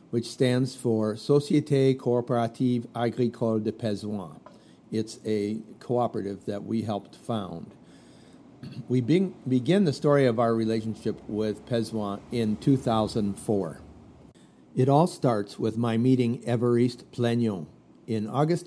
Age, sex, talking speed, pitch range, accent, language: 50-69, male, 120 wpm, 110-125 Hz, American, English